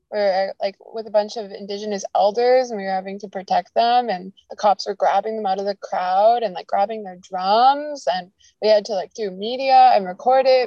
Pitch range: 200-235 Hz